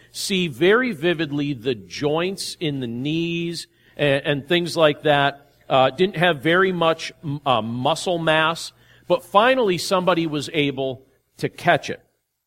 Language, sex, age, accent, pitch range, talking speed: English, male, 50-69, American, 135-170 Hz, 145 wpm